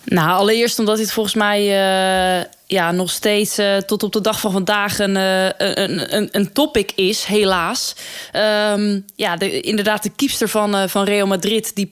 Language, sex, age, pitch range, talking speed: Dutch, female, 20-39, 180-210 Hz, 180 wpm